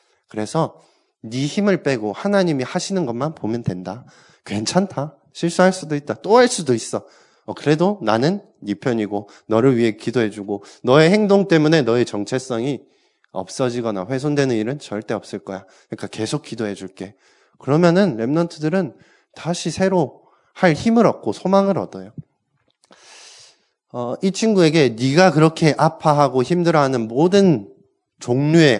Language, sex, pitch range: Korean, male, 110-170 Hz